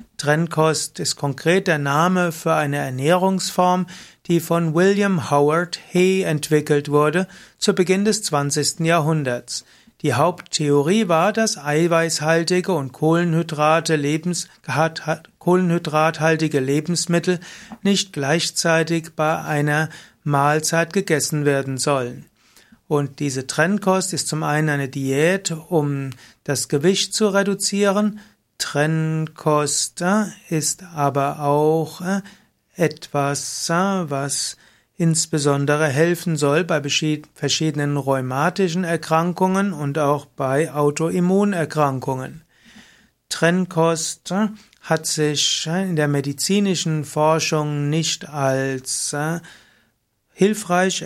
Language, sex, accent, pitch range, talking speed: German, male, German, 145-175 Hz, 90 wpm